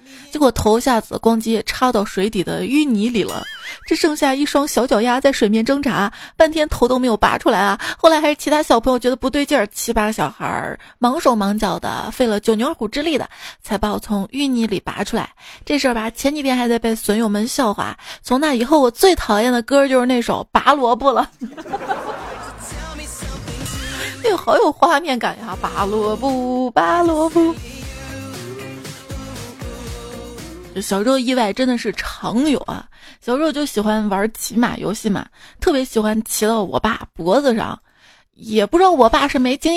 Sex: female